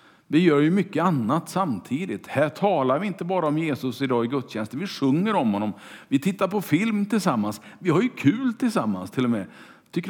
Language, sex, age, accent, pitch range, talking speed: Swedish, male, 50-69, Norwegian, 135-190 Hz, 200 wpm